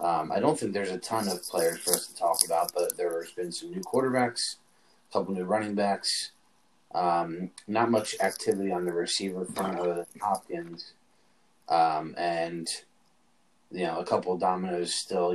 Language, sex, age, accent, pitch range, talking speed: English, male, 30-49, American, 85-100 Hz, 180 wpm